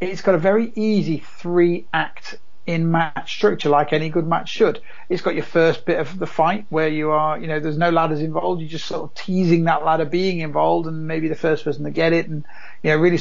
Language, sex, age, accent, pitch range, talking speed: English, male, 30-49, British, 150-175 Hz, 240 wpm